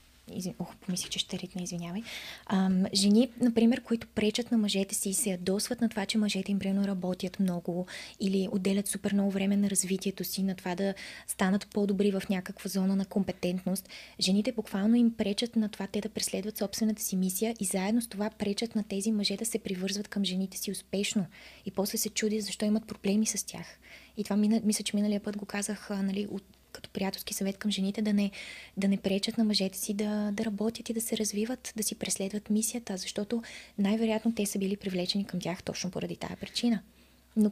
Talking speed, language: 205 wpm, Bulgarian